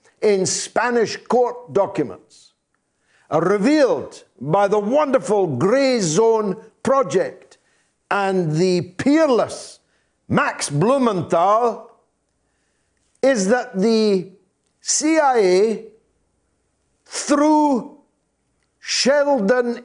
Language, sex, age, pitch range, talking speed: English, male, 50-69, 195-260 Hz, 70 wpm